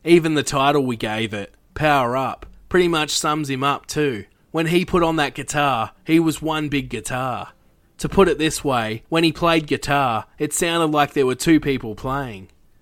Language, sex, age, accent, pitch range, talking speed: English, male, 20-39, Australian, 125-155 Hz, 195 wpm